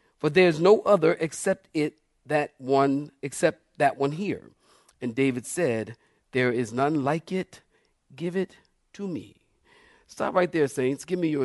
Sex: male